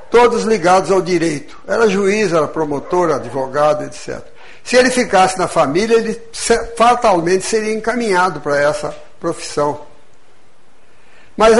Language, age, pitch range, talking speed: Portuguese, 60-79, 155-215 Hz, 120 wpm